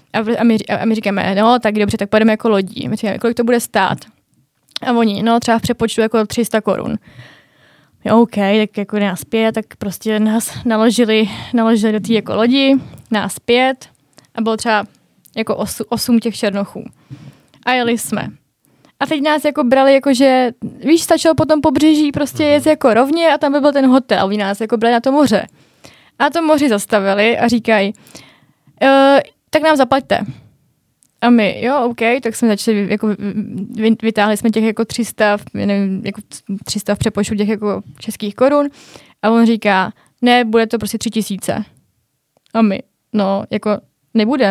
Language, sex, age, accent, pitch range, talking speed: Czech, female, 20-39, native, 210-245 Hz, 175 wpm